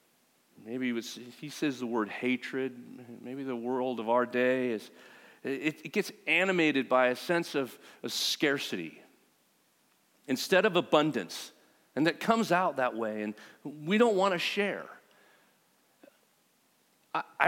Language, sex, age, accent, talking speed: English, male, 40-59, American, 140 wpm